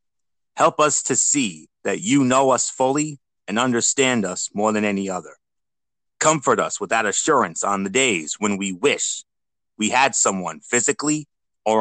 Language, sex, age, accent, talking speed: English, male, 30-49, American, 165 wpm